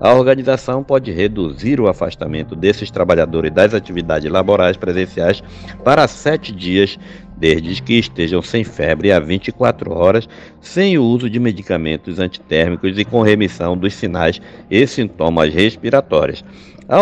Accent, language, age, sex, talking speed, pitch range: Brazilian, Portuguese, 60-79, male, 135 wpm, 90-120 Hz